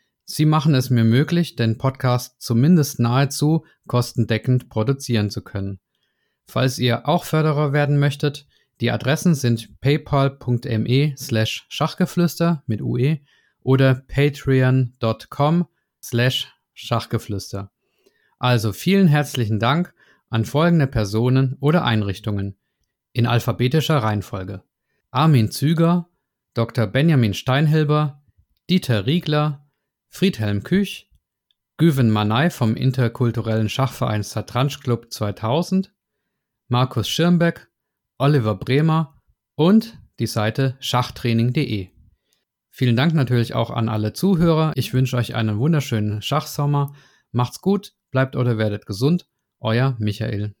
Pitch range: 115-150 Hz